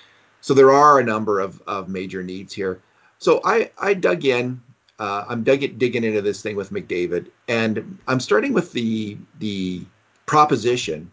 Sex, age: male, 40-59